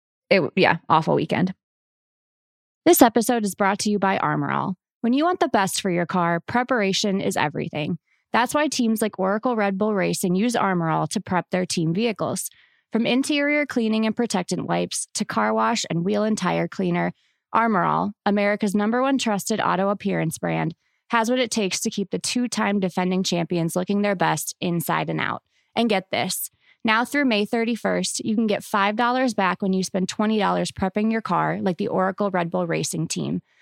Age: 20-39